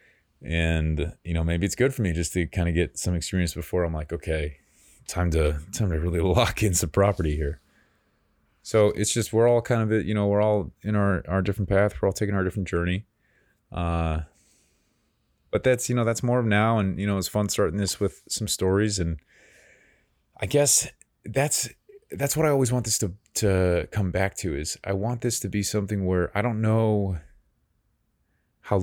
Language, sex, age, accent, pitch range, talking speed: English, male, 20-39, American, 85-105 Hz, 200 wpm